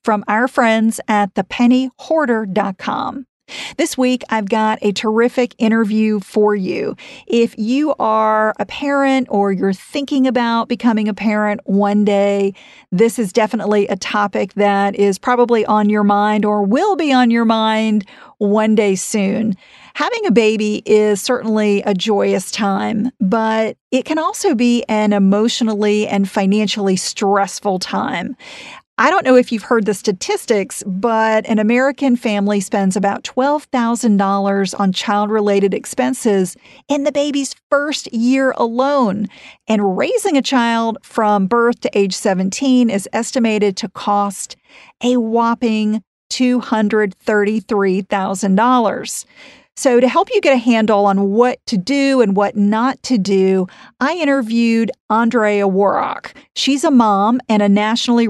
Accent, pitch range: American, 205-245 Hz